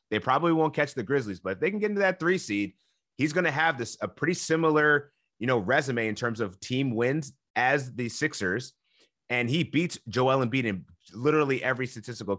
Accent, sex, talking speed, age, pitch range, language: American, male, 210 wpm, 30-49, 110-145 Hz, English